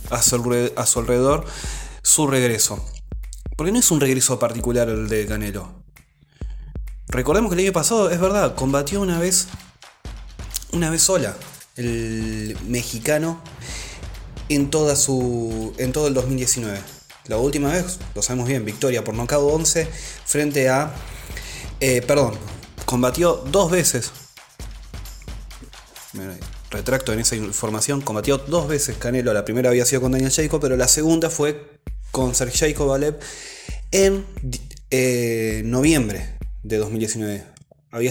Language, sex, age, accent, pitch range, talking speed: Spanish, male, 20-39, Argentinian, 110-145 Hz, 130 wpm